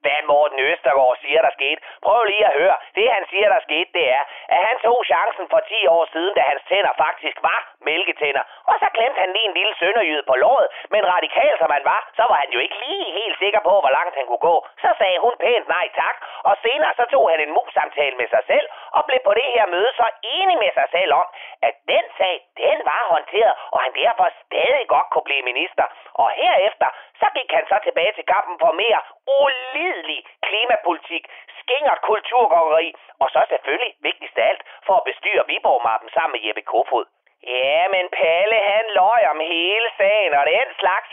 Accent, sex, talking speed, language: native, male, 210 wpm, Danish